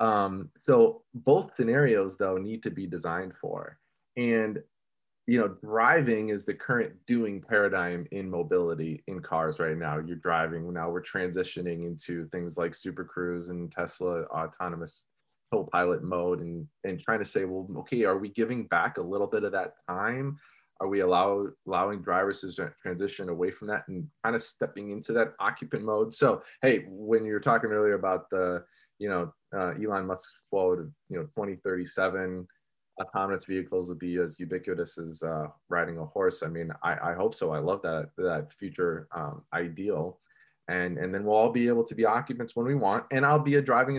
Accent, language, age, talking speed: American, English, 20-39, 185 wpm